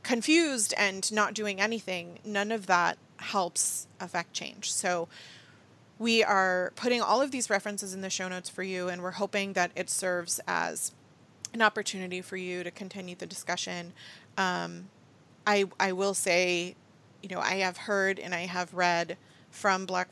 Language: English